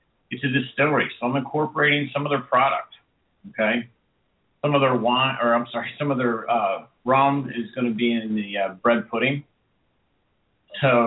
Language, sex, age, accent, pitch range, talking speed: English, male, 50-69, American, 115-135 Hz, 180 wpm